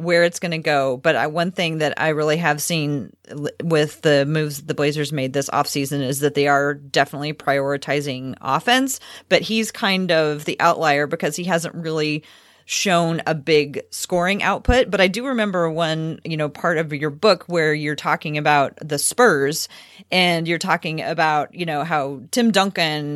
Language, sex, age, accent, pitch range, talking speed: English, female, 30-49, American, 150-180 Hz, 180 wpm